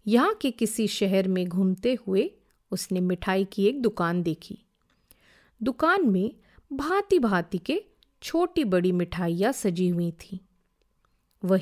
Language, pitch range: Hindi, 180-245 Hz